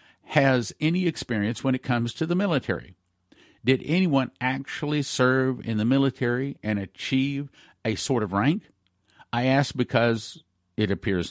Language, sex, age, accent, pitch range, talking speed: English, male, 50-69, American, 105-140 Hz, 145 wpm